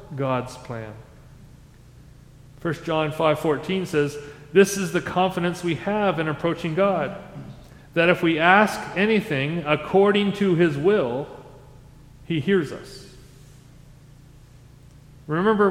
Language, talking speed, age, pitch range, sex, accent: English, 105 wpm, 40-59, 140-175 Hz, male, American